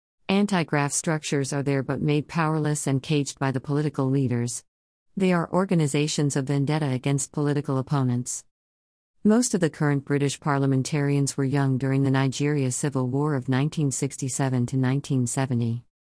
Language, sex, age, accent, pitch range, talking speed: English, female, 50-69, American, 130-155 Hz, 145 wpm